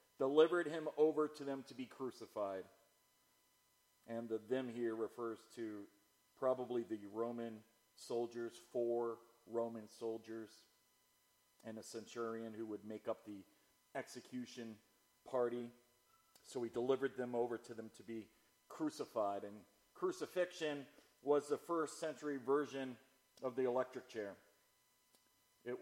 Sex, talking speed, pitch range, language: male, 125 wpm, 115-135 Hz, English